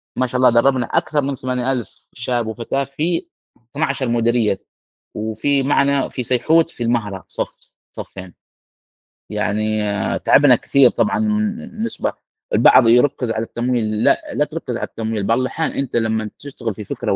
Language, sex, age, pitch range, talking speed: Arabic, male, 30-49, 110-140 Hz, 145 wpm